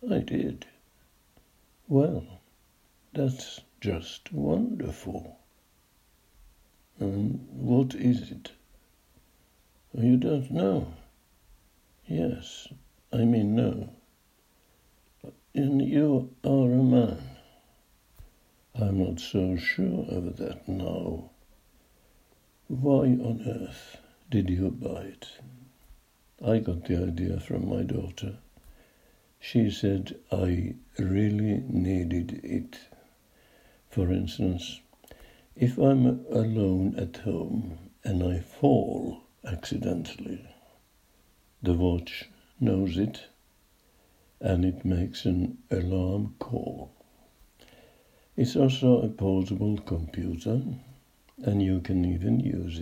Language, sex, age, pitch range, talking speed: Finnish, male, 60-79, 90-125 Hz, 90 wpm